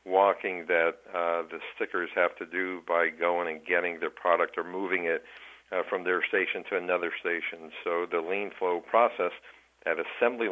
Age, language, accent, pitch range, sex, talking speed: 50-69, English, American, 90-100 Hz, male, 175 wpm